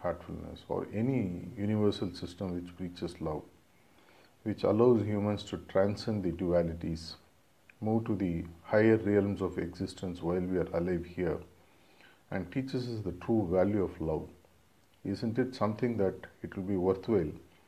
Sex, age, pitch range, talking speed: male, 50-69, 90-100 Hz, 145 wpm